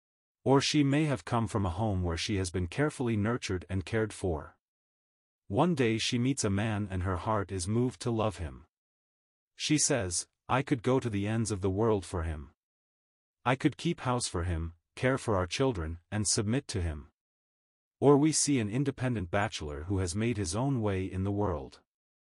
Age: 40-59